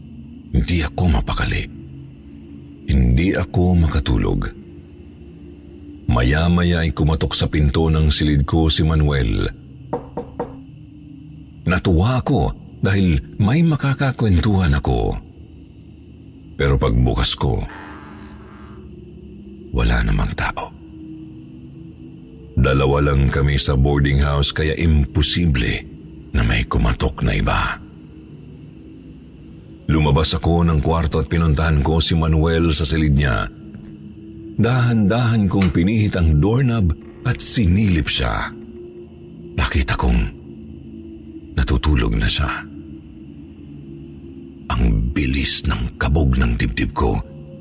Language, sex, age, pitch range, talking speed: Filipino, male, 50-69, 70-90 Hz, 90 wpm